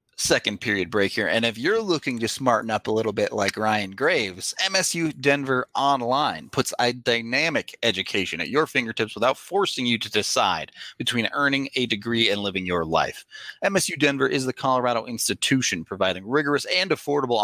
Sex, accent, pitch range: male, American, 100-135 Hz